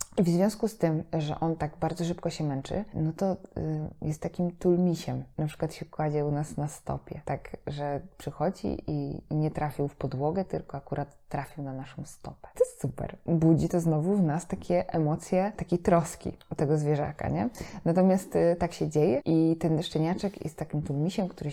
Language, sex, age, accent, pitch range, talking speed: Polish, female, 20-39, native, 145-175 Hz, 190 wpm